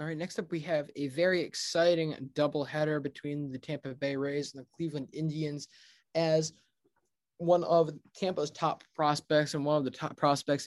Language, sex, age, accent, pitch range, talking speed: English, male, 20-39, American, 140-160 Hz, 175 wpm